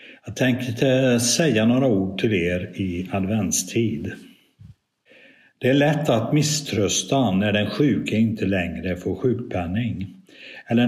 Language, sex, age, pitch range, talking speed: Swedish, male, 60-79, 90-115 Hz, 120 wpm